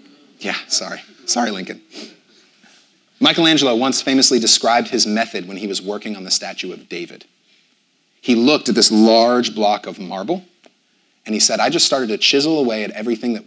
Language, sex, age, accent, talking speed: English, male, 30-49, American, 175 wpm